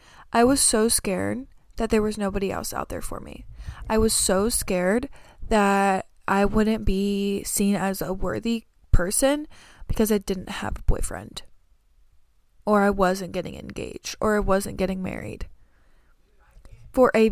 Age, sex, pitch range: 20-39, female, 190-215 Hz